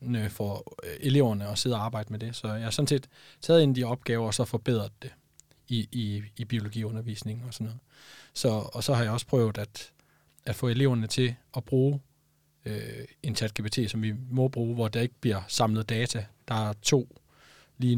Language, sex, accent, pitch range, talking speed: Danish, male, native, 110-130 Hz, 205 wpm